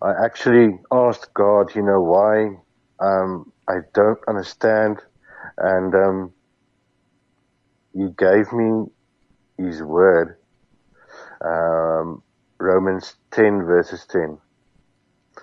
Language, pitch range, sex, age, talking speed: English, 90-110 Hz, male, 50-69, 90 wpm